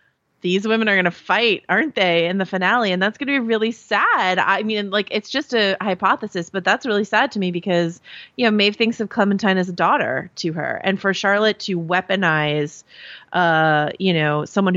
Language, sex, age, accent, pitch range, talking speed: English, female, 30-49, American, 160-195 Hz, 210 wpm